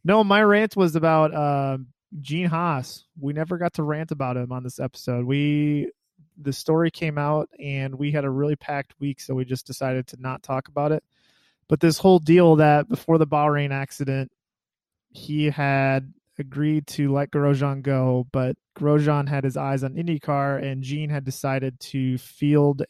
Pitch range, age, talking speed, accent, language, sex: 130-150 Hz, 20-39, 180 wpm, American, English, male